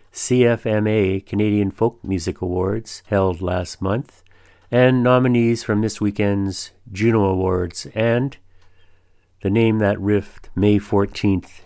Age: 50-69